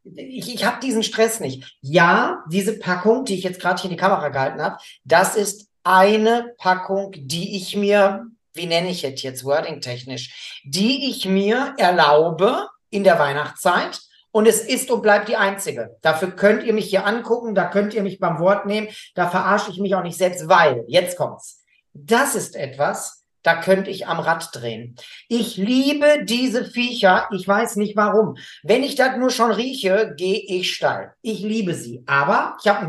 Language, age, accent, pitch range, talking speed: German, 50-69, German, 170-225 Hz, 185 wpm